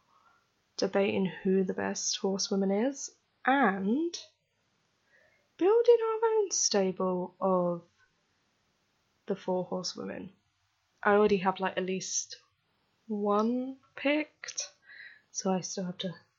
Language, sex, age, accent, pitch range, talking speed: English, female, 10-29, British, 180-210 Hz, 105 wpm